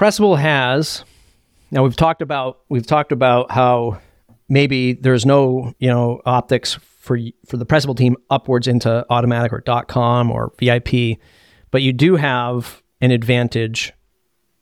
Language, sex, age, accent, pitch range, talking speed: English, male, 40-59, American, 120-135 Hz, 140 wpm